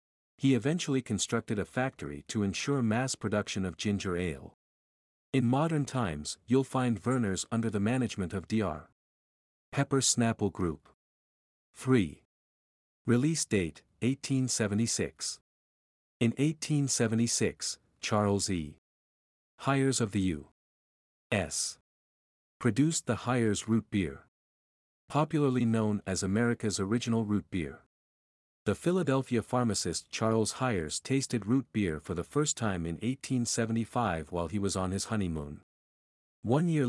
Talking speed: 115 wpm